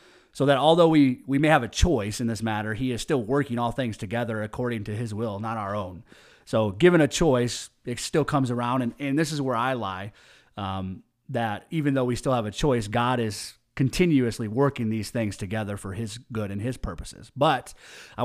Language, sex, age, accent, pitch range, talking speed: English, male, 30-49, American, 115-145 Hz, 215 wpm